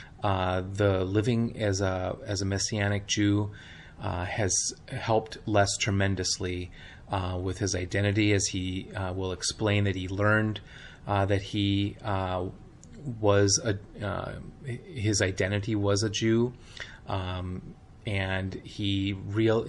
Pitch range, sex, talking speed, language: 95-105 Hz, male, 130 wpm, English